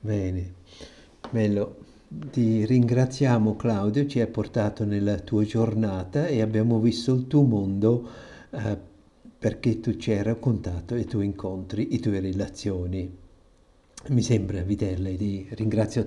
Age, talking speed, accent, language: 60-79, 130 wpm, native, Italian